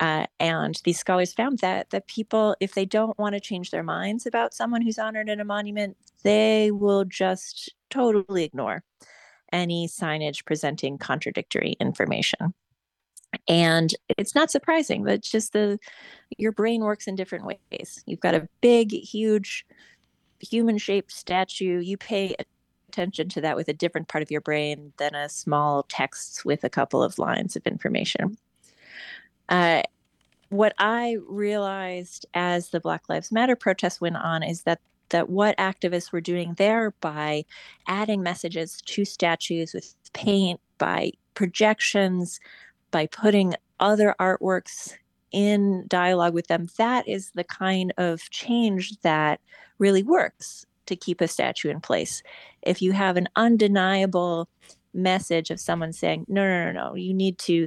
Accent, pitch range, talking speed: American, 170-210 Hz, 150 wpm